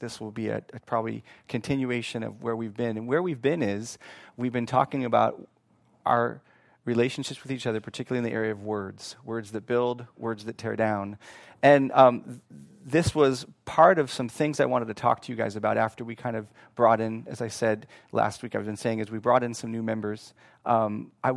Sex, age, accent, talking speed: male, 30-49, American, 215 wpm